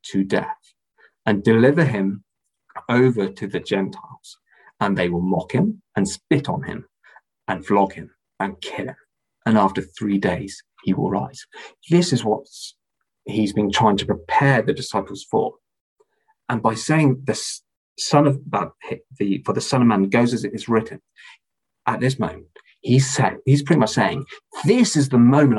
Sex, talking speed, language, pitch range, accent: male, 170 wpm, English, 110-170 Hz, British